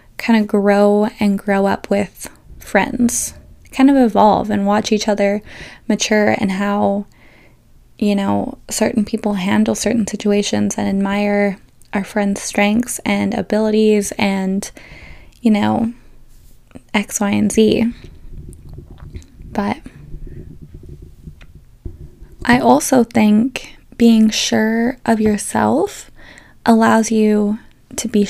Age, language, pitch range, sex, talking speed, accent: 10-29, English, 200-230 Hz, female, 110 wpm, American